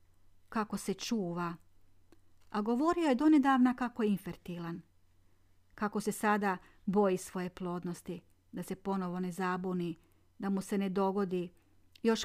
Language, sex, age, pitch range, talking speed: Croatian, female, 40-59, 165-195 Hz, 125 wpm